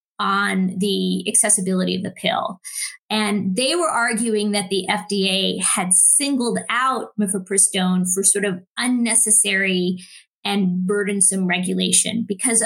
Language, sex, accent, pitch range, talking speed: English, female, American, 190-245 Hz, 120 wpm